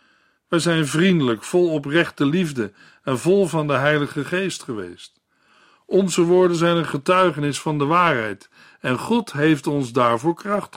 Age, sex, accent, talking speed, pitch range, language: 50-69, male, Dutch, 150 wpm, 135-175 Hz, Dutch